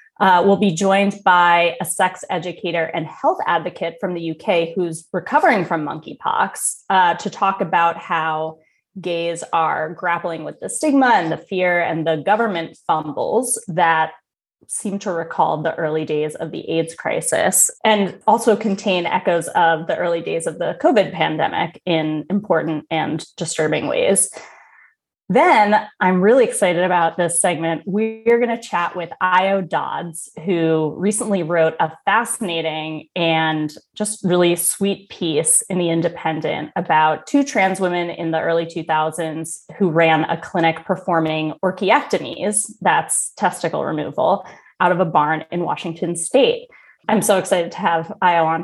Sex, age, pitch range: female, 20-39, 165-200 Hz